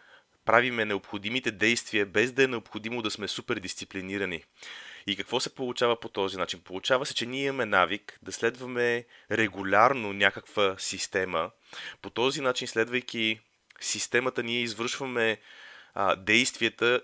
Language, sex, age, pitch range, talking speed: Bulgarian, male, 30-49, 100-125 Hz, 135 wpm